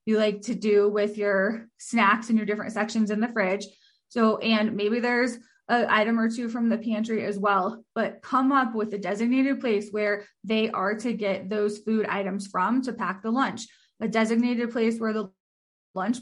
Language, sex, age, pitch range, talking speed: English, female, 20-39, 210-240 Hz, 195 wpm